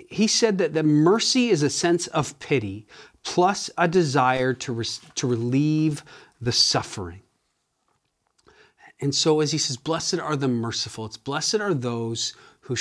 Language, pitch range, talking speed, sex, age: English, 120-155 Hz, 155 wpm, male, 40-59